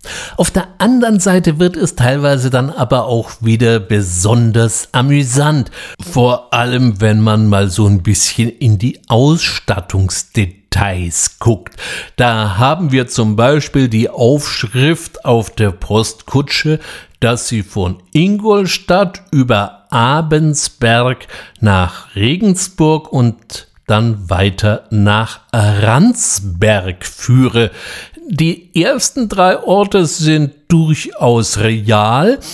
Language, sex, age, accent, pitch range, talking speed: German, male, 60-79, German, 110-160 Hz, 105 wpm